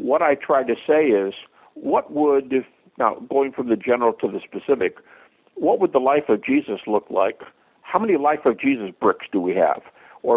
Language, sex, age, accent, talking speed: English, male, 60-79, American, 205 wpm